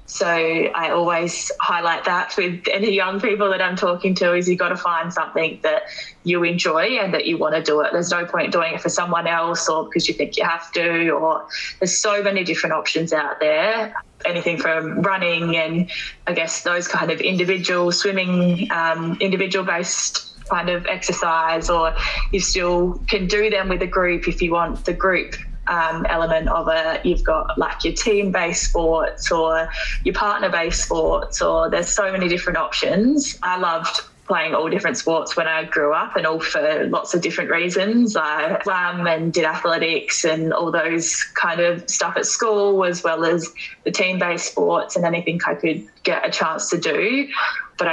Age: 20-39